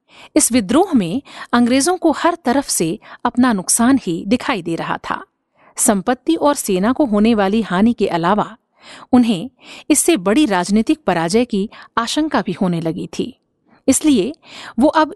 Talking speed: 150 wpm